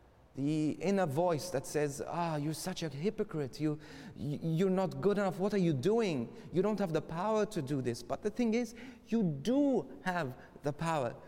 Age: 40-59